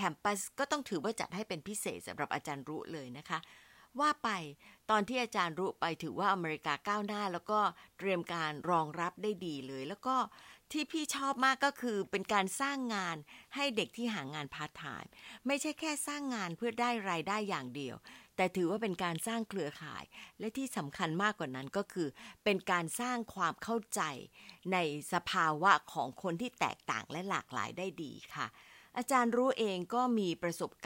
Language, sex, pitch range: Thai, female, 160-225 Hz